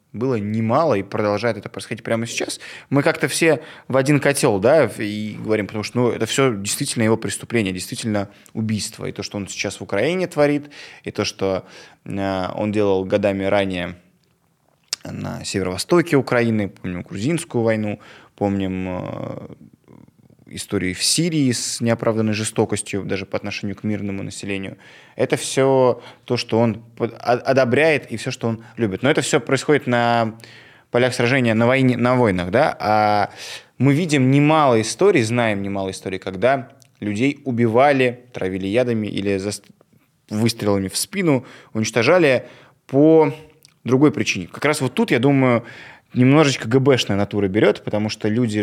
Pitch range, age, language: 105-130 Hz, 20-39, Russian